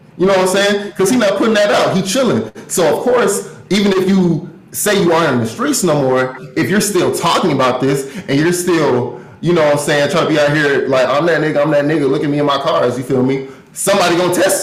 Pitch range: 130-180 Hz